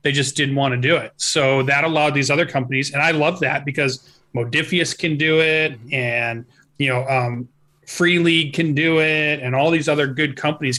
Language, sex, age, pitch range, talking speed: English, male, 30-49, 130-160 Hz, 205 wpm